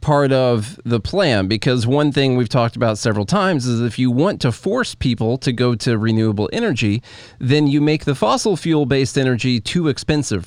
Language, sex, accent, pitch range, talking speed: English, male, American, 120-160 Hz, 195 wpm